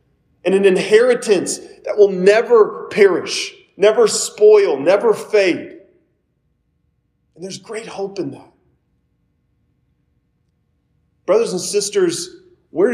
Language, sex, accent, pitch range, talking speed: English, male, American, 155-210 Hz, 95 wpm